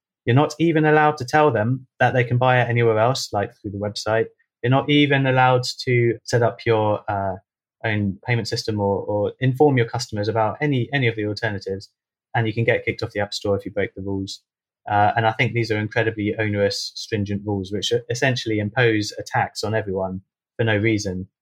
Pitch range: 100-120 Hz